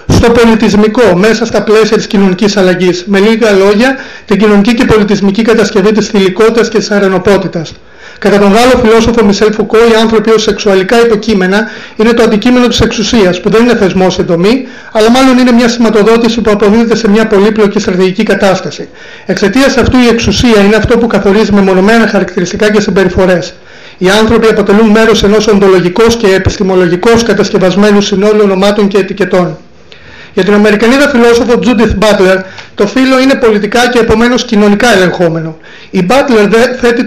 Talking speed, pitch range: 155 wpm, 195-230 Hz